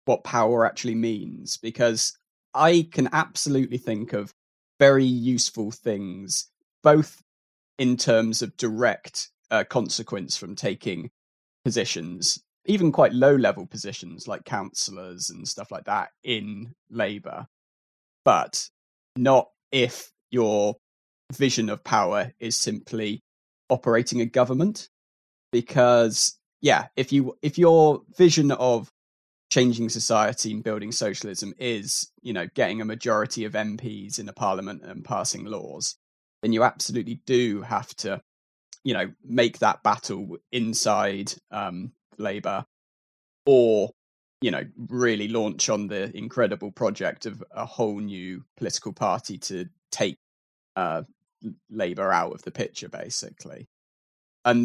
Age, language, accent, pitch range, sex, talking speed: 20-39, English, British, 100-130 Hz, male, 125 wpm